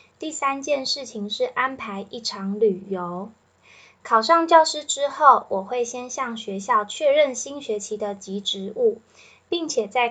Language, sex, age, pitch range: Chinese, female, 20-39, 215-275 Hz